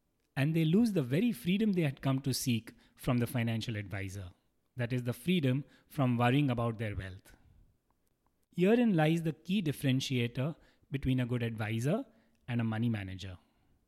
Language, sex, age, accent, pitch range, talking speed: English, male, 30-49, Indian, 115-160 Hz, 160 wpm